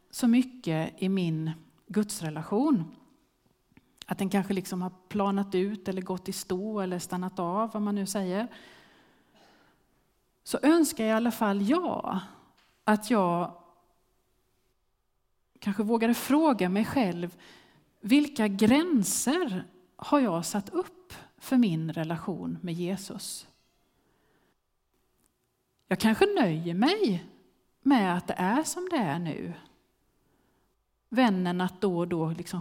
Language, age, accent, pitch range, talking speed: Swedish, 30-49, native, 180-245 Hz, 120 wpm